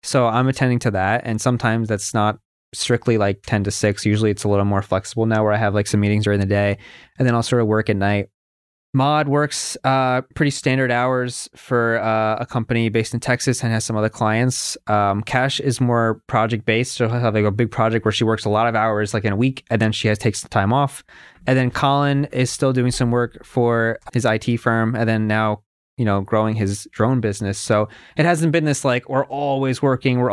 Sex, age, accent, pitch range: male, 20-39, American, 105-130 Hz